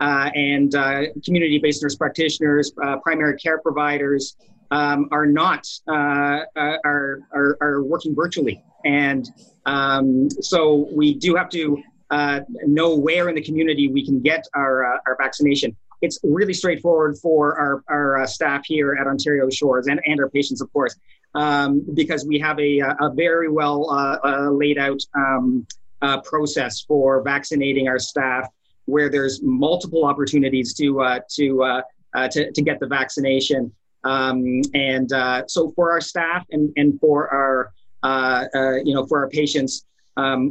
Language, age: English, 40-59